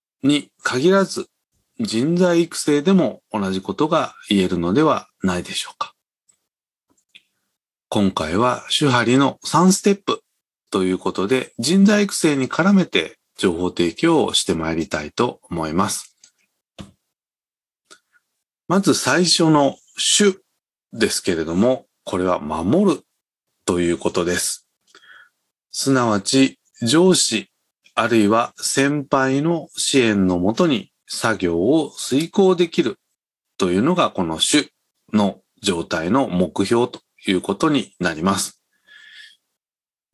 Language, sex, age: Japanese, male, 40-59